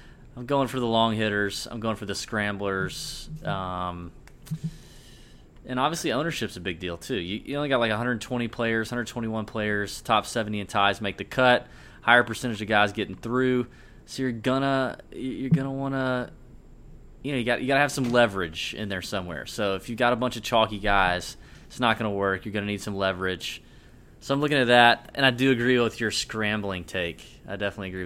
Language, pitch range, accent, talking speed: English, 100-125 Hz, American, 200 wpm